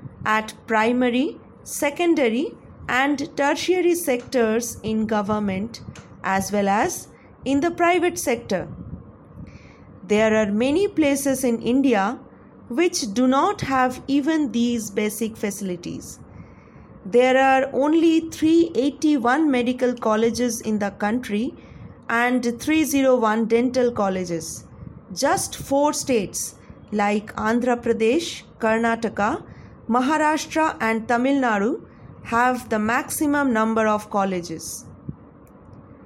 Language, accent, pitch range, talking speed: English, Indian, 220-285 Hz, 100 wpm